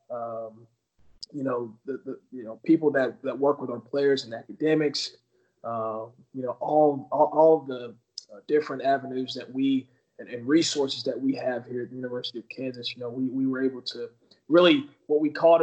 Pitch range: 120-140 Hz